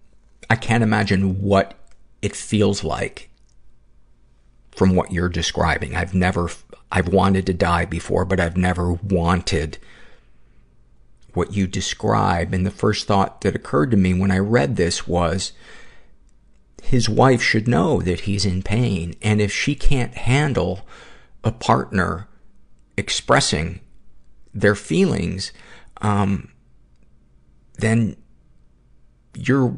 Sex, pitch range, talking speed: male, 85-105 Hz, 120 wpm